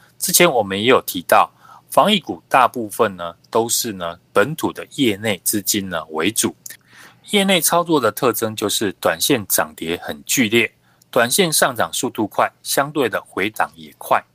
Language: Chinese